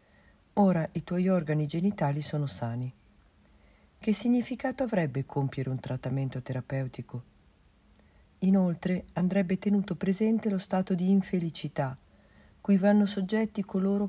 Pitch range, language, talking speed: 135-190 Hz, Italian, 110 wpm